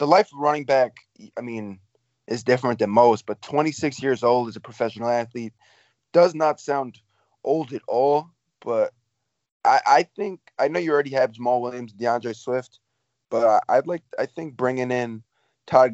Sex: male